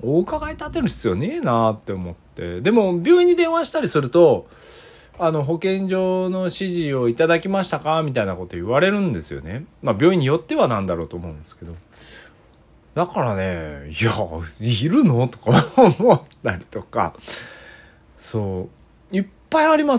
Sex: male